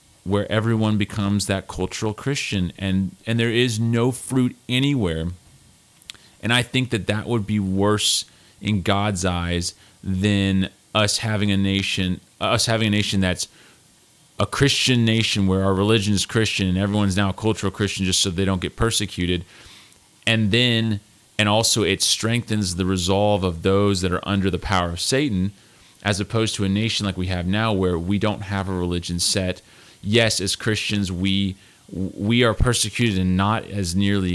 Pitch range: 95-110 Hz